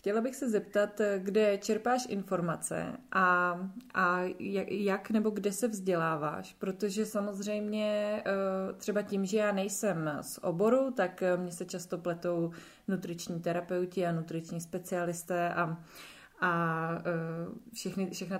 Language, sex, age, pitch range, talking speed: Czech, female, 20-39, 170-205 Hz, 120 wpm